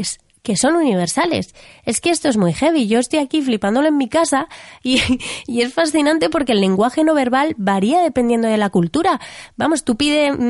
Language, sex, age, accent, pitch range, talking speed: Spanish, female, 20-39, Spanish, 210-280 Hz, 190 wpm